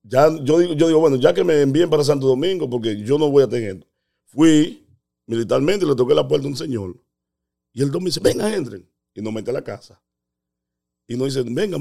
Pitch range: 100-140 Hz